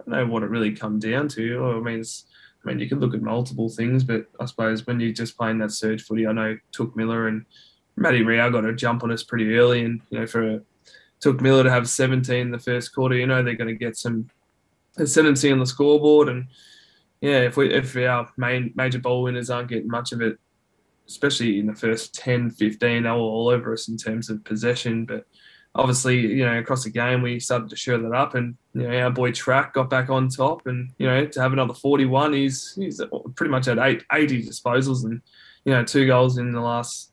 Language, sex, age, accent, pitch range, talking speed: English, male, 20-39, Australian, 115-130 Hz, 235 wpm